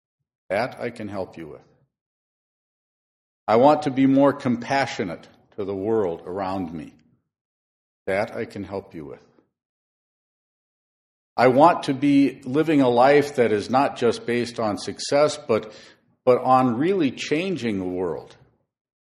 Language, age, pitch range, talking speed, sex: English, 50-69, 100-140 Hz, 140 wpm, male